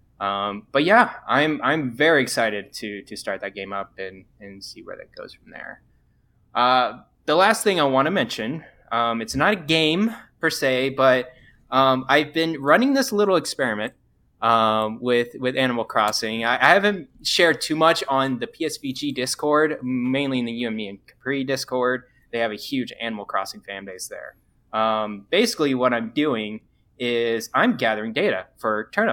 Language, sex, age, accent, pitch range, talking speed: English, male, 10-29, American, 110-150 Hz, 175 wpm